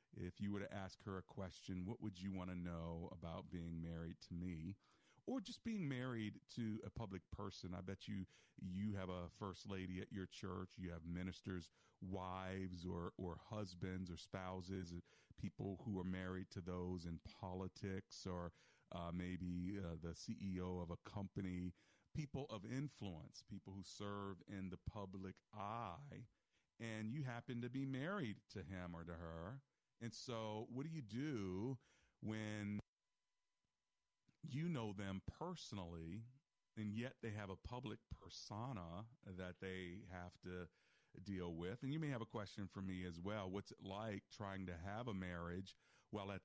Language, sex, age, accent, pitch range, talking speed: English, male, 40-59, American, 90-110 Hz, 165 wpm